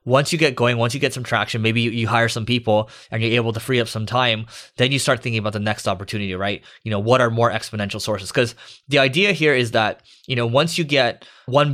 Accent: American